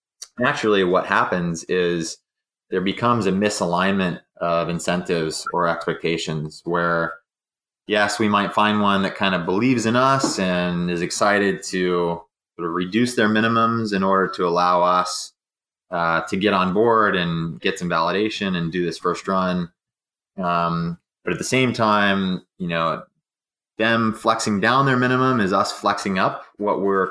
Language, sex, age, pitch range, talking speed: English, male, 20-39, 85-105 Hz, 155 wpm